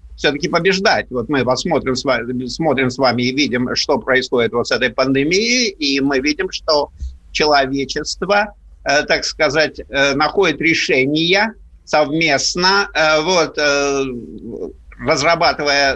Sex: male